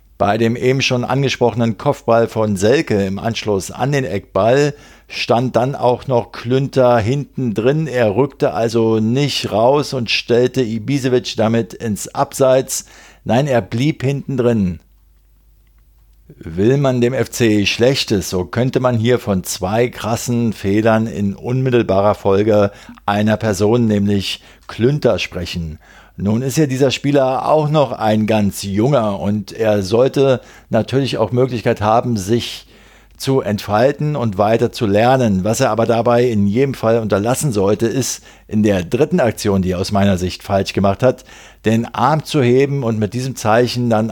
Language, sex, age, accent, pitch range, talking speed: German, male, 50-69, German, 105-130 Hz, 150 wpm